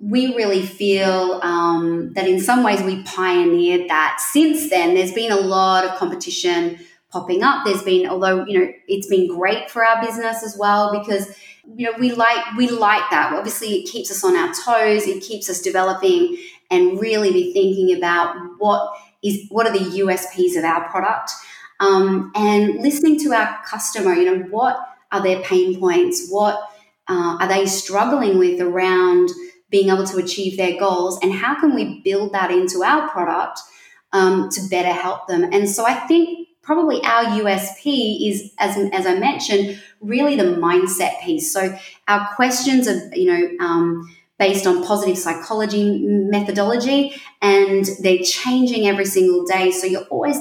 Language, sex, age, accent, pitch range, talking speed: English, female, 20-39, Australian, 185-245 Hz, 170 wpm